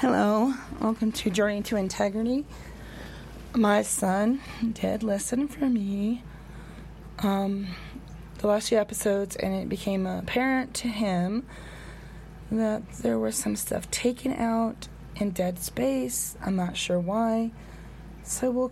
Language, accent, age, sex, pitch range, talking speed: English, American, 20-39, female, 170-220 Hz, 125 wpm